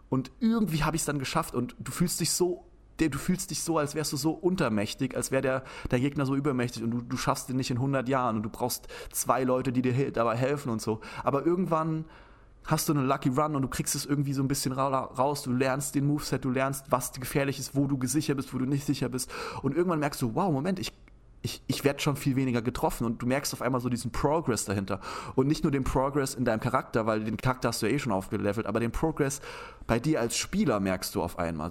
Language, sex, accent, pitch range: German, male, German, 125-145 Hz